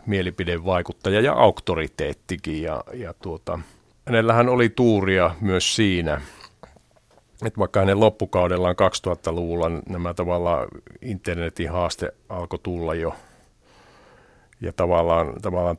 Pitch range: 85-100 Hz